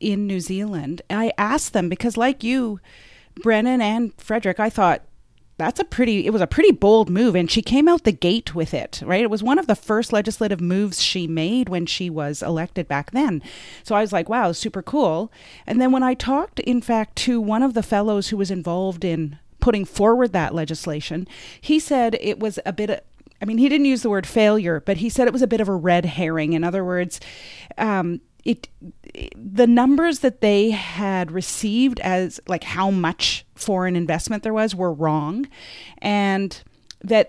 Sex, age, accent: female, 30-49, American